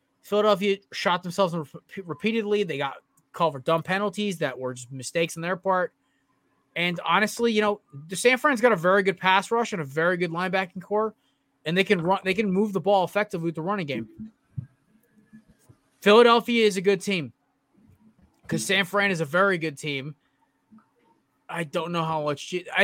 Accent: American